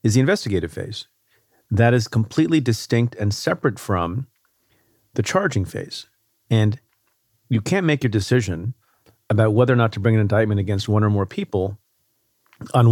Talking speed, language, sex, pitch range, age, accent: 160 wpm, English, male, 105-125 Hz, 40-59, American